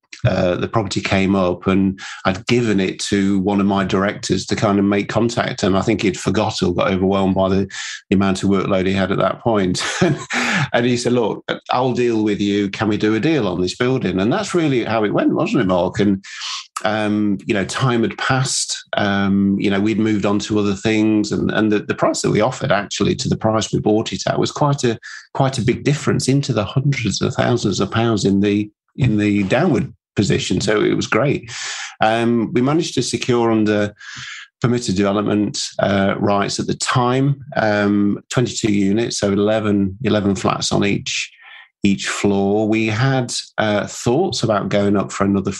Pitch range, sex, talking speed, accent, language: 100-115 Hz, male, 200 wpm, British, English